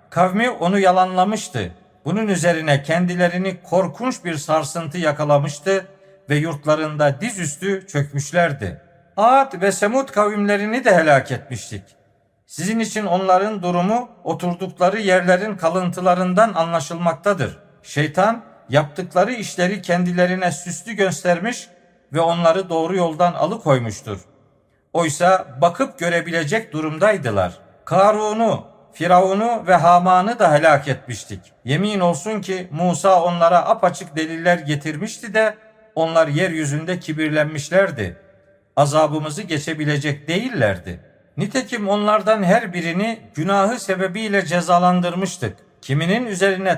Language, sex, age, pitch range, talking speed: Turkish, male, 50-69, 150-195 Hz, 95 wpm